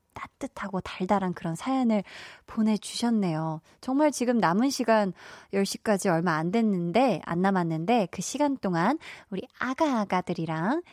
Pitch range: 190-275 Hz